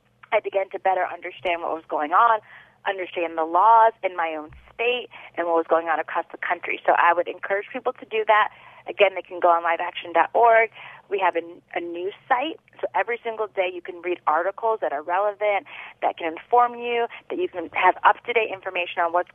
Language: English